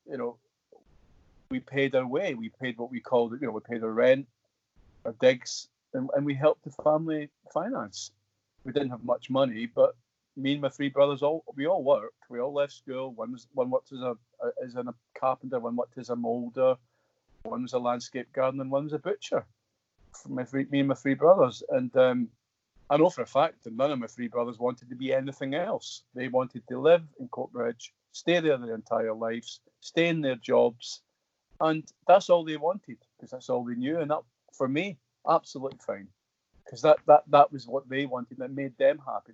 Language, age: English, 40-59